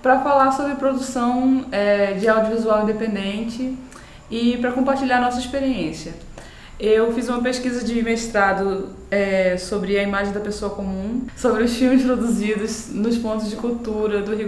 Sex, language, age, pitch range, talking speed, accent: female, Portuguese, 20-39, 210-250 Hz, 140 wpm, Brazilian